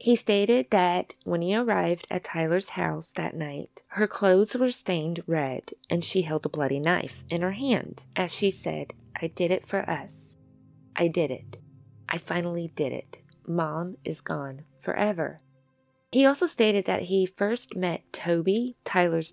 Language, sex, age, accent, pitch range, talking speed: English, female, 20-39, American, 160-220 Hz, 165 wpm